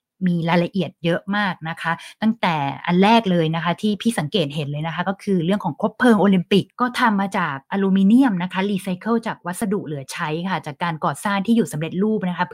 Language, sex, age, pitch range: Thai, female, 20-39, 170-220 Hz